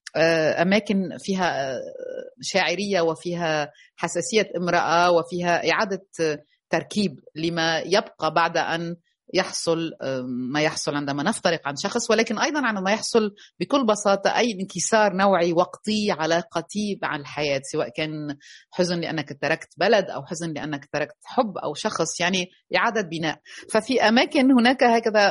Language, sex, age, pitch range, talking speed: Arabic, female, 30-49, 165-220 Hz, 130 wpm